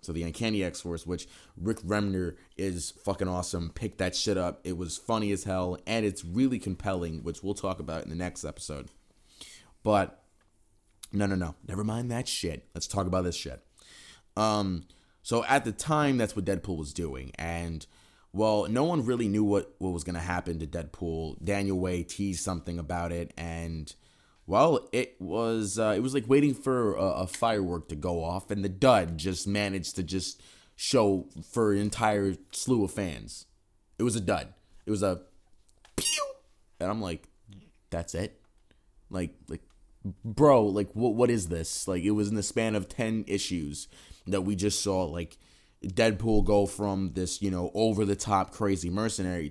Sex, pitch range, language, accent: male, 85-105 Hz, English, American